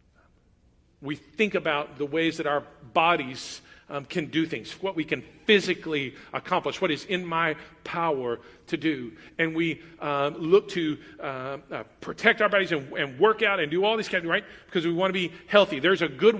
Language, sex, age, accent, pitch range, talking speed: English, male, 40-59, American, 140-185 Hz, 200 wpm